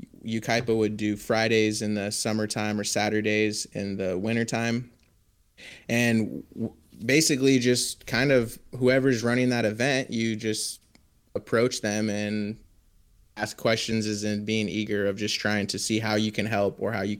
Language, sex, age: English, male, 20-39